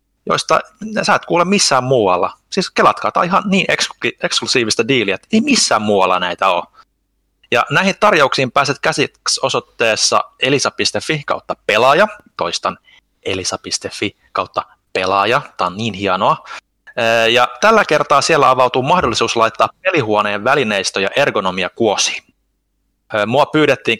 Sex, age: male, 30-49